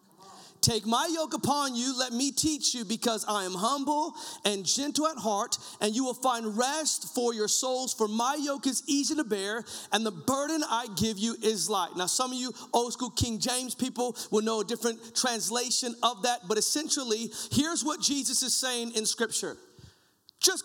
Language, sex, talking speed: English, male, 190 wpm